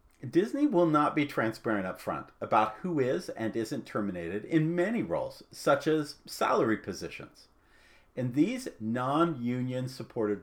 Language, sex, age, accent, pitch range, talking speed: English, male, 50-69, American, 110-180 Hz, 140 wpm